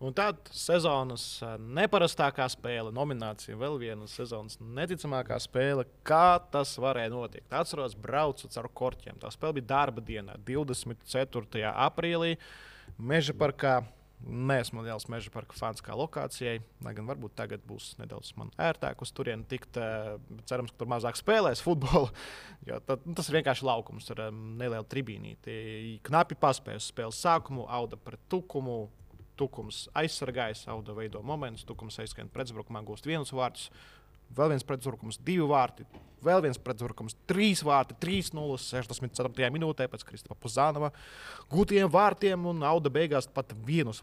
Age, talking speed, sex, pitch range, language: 20-39, 130 wpm, male, 115-145 Hz, English